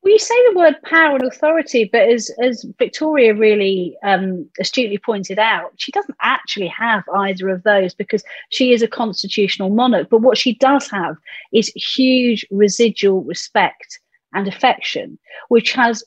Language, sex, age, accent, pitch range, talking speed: English, female, 40-59, British, 195-245 Hz, 155 wpm